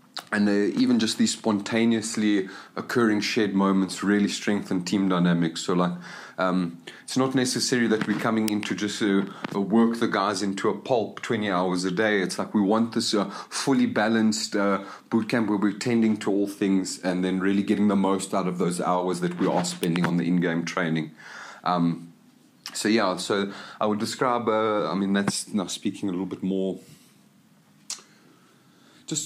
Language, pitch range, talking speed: English, 90-110 Hz, 180 wpm